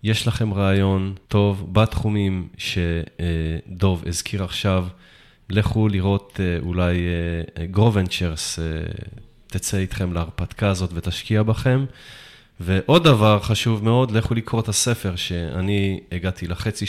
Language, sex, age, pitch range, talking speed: English, male, 20-39, 90-110 Hz, 105 wpm